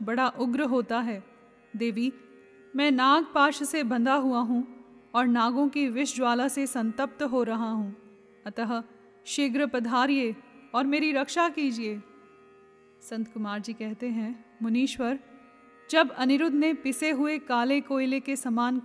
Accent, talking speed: native, 135 wpm